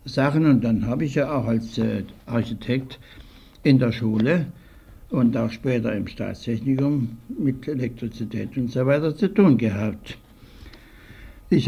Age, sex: 60-79, male